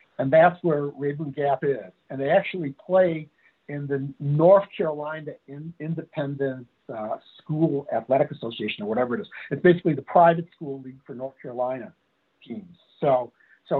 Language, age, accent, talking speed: English, 60-79, American, 155 wpm